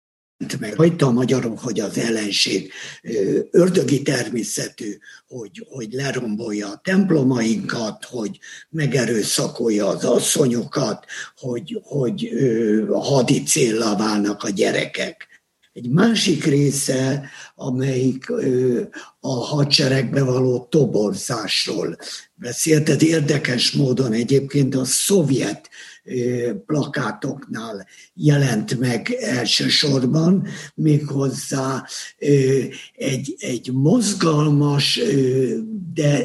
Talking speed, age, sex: 80 wpm, 50-69, male